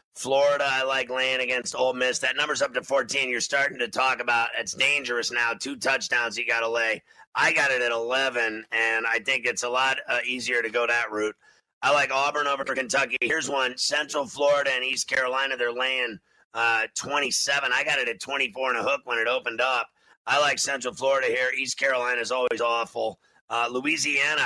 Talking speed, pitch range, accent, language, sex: 205 wpm, 120-140 Hz, American, English, male